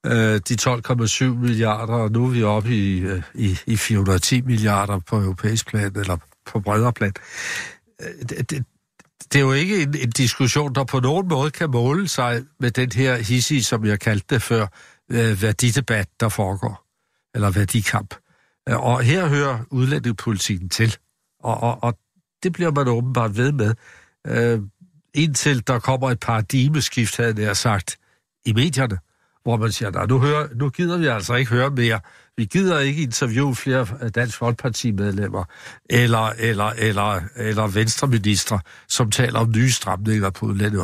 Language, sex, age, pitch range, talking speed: Danish, male, 60-79, 105-130 Hz, 155 wpm